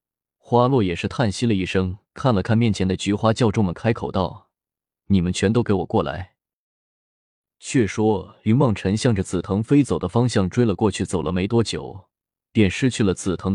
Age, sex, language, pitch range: 20-39, male, Chinese, 95-115 Hz